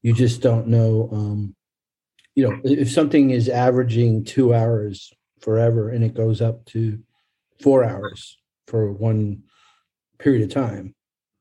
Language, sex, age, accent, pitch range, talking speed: English, male, 50-69, American, 110-135 Hz, 135 wpm